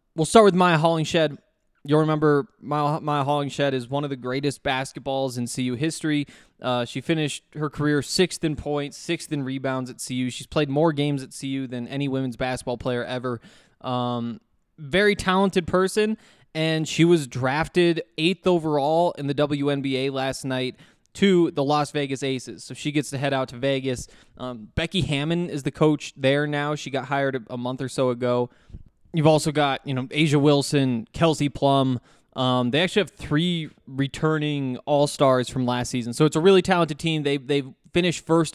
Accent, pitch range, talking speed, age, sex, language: American, 130-155 Hz, 180 wpm, 20-39, male, English